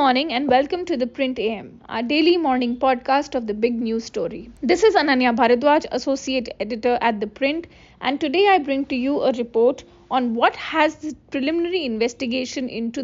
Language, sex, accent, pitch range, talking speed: English, female, Indian, 235-280 Hz, 190 wpm